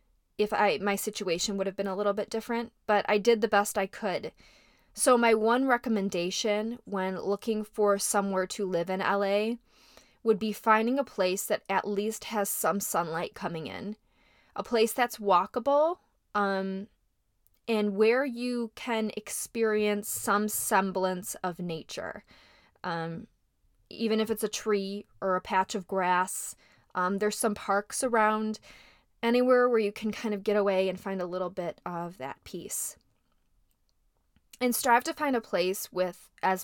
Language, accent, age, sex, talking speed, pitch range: English, American, 20-39, female, 160 wpm, 190-225 Hz